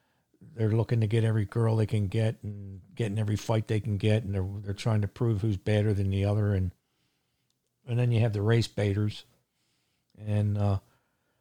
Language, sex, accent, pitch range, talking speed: English, male, American, 100-120 Hz, 195 wpm